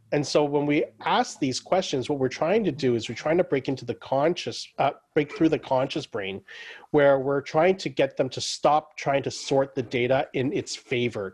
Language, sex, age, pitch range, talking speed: English, male, 30-49, 120-150 Hz, 220 wpm